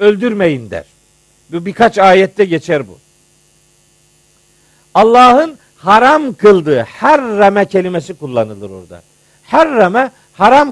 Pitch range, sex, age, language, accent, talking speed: 185-235 Hz, male, 50-69, Turkish, native, 100 wpm